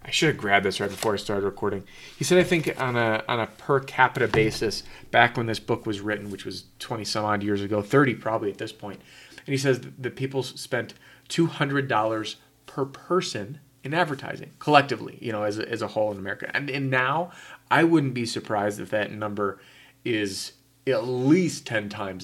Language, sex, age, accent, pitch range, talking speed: English, male, 30-49, American, 105-135 Hz, 205 wpm